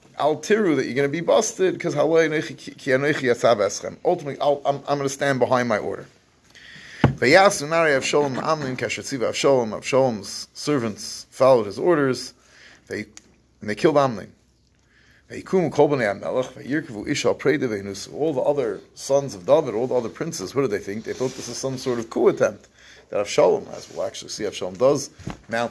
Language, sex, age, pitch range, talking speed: English, male, 30-49, 120-145 Hz, 155 wpm